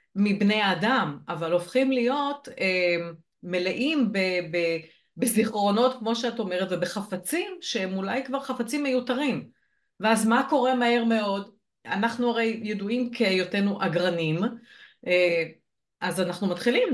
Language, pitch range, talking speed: Hebrew, 185-255 Hz, 105 wpm